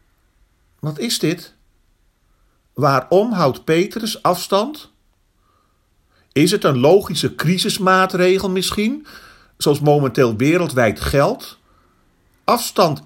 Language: Dutch